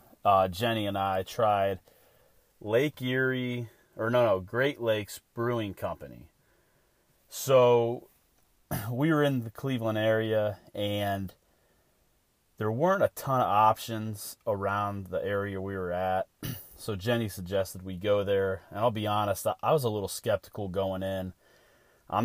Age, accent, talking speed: 30-49, American, 140 wpm